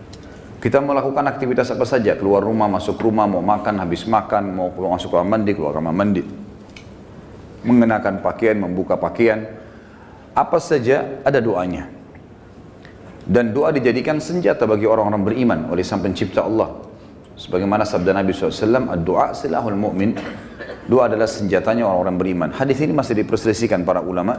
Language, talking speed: Indonesian, 145 wpm